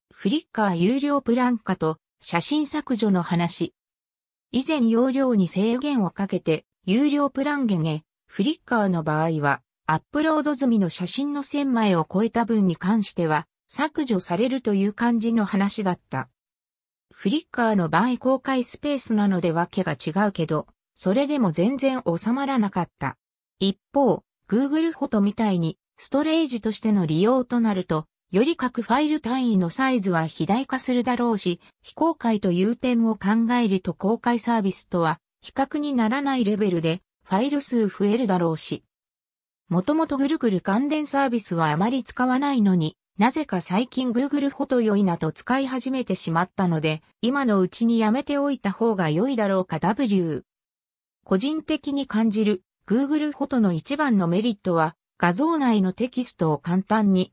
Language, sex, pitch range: Japanese, female, 180-260 Hz